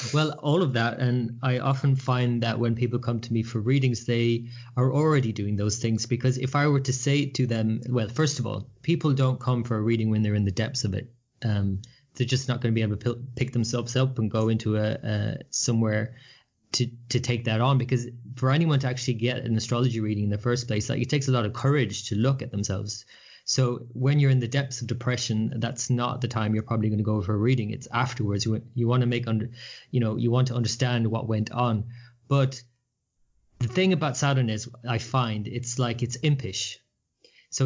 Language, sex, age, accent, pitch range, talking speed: English, male, 20-39, Irish, 110-130 Hz, 230 wpm